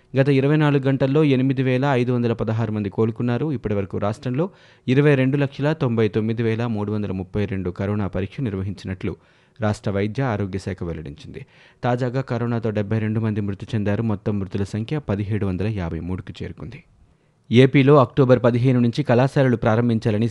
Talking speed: 110 wpm